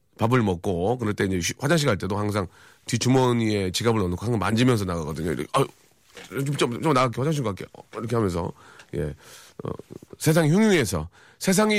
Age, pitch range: 40-59, 105-175 Hz